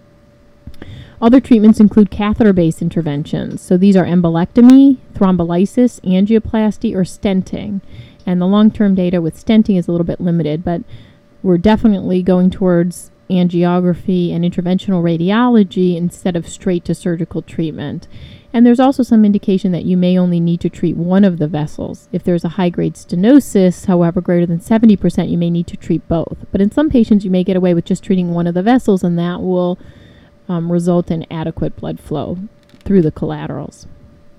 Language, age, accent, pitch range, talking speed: English, 30-49, American, 170-205 Hz, 165 wpm